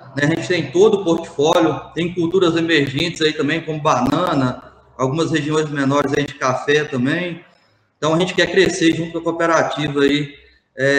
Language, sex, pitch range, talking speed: Portuguese, male, 140-165 Hz, 170 wpm